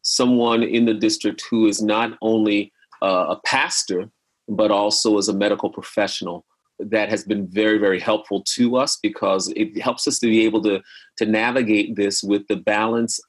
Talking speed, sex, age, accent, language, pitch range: 175 wpm, male, 30-49, American, English, 105-130 Hz